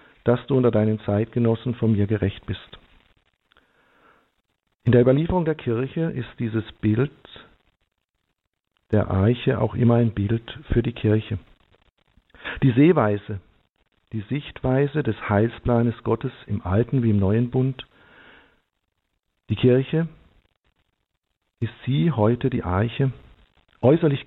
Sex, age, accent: male, 50-69, German